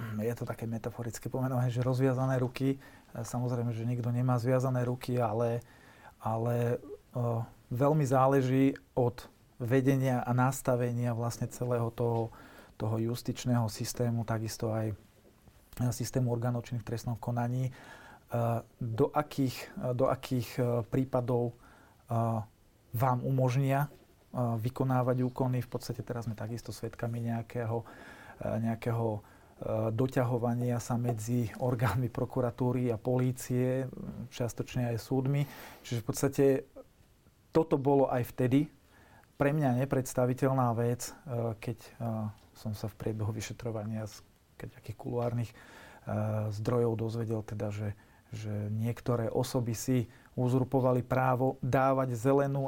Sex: male